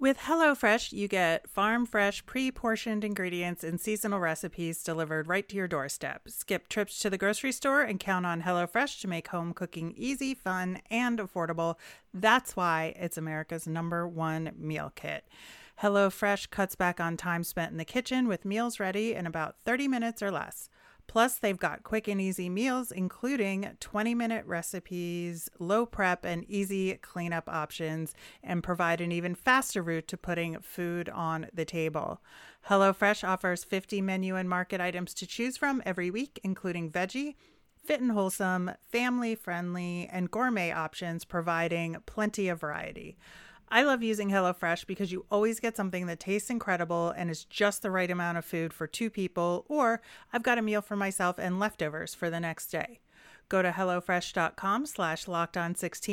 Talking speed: 165 wpm